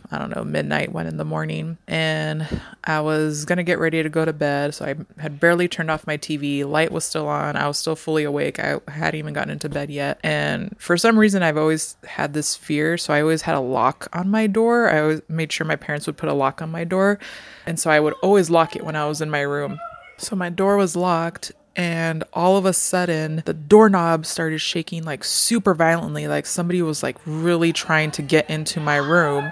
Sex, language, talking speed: female, English, 235 wpm